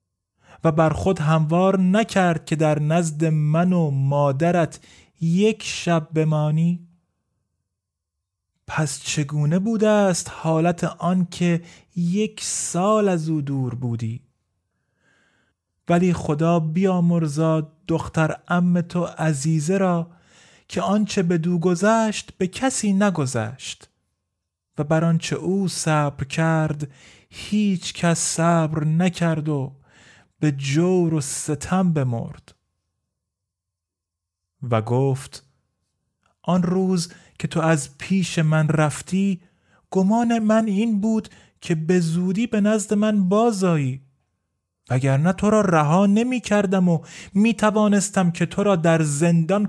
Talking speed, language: 115 wpm, Persian